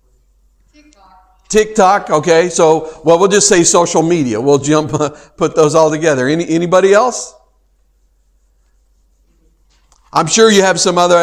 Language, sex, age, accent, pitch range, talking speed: English, male, 50-69, American, 150-195 Hz, 130 wpm